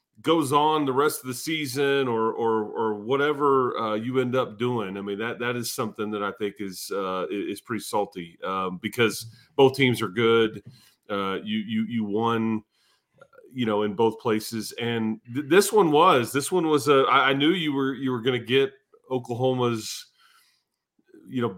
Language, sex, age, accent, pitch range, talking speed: English, male, 30-49, American, 115-135 Hz, 190 wpm